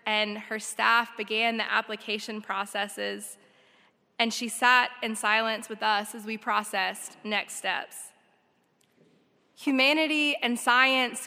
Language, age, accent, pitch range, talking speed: English, 20-39, American, 220-245 Hz, 115 wpm